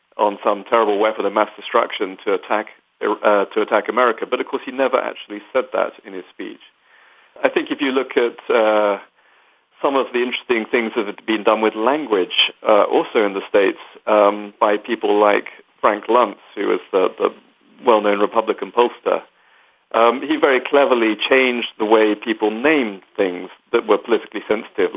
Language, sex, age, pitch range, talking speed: English, male, 40-59, 105-125 Hz, 180 wpm